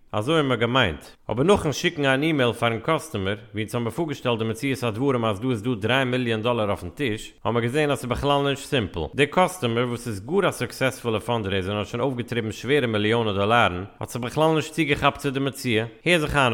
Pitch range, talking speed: 110-145 Hz, 235 wpm